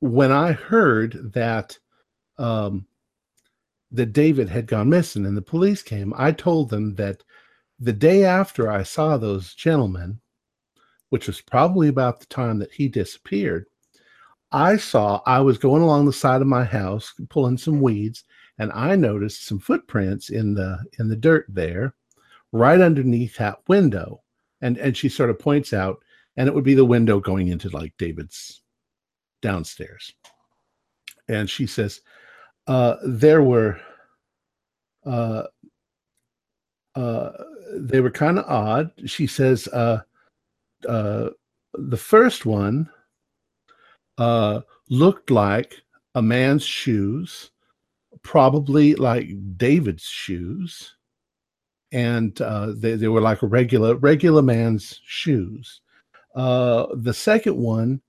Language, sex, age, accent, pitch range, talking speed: English, male, 50-69, American, 105-145 Hz, 130 wpm